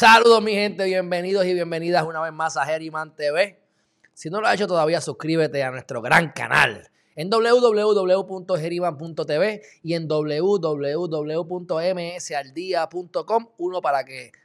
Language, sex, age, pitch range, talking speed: Spanish, male, 20-39, 140-180 Hz, 130 wpm